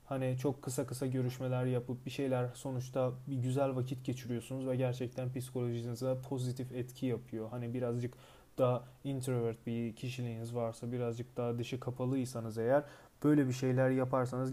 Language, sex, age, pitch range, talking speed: Turkish, male, 30-49, 120-135 Hz, 145 wpm